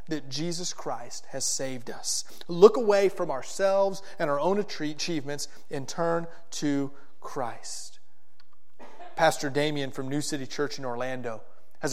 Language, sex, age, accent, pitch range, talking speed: English, male, 30-49, American, 130-165 Hz, 135 wpm